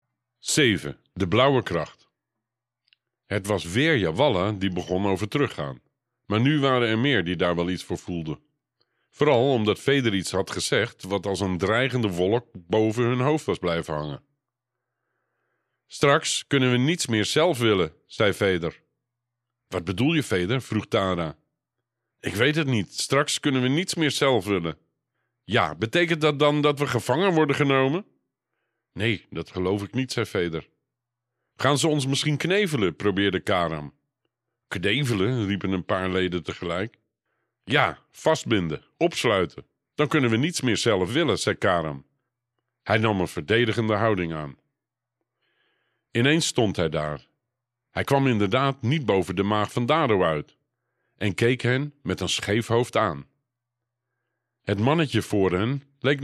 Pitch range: 95-135 Hz